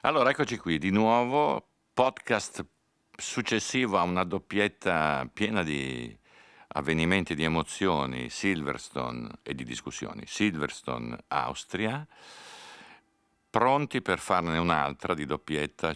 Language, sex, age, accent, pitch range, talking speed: Italian, male, 50-69, native, 65-80 Hz, 100 wpm